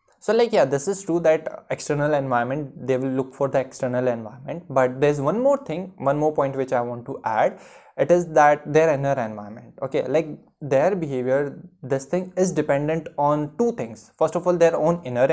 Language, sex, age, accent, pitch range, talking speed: Hindi, male, 20-39, native, 130-170 Hz, 205 wpm